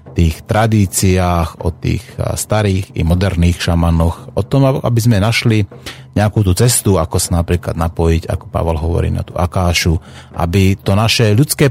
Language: Slovak